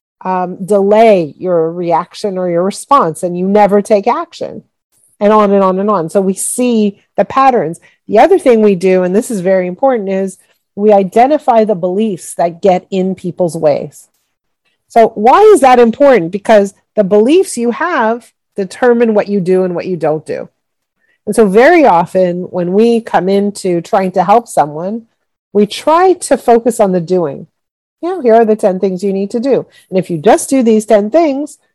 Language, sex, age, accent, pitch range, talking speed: English, female, 40-59, American, 185-235 Hz, 185 wpm